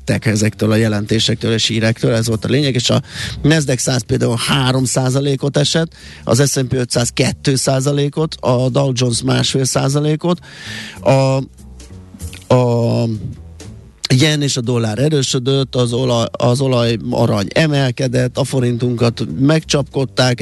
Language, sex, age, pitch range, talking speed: Hungarian, male, 30-49, 115-130 Hz, 105 wpm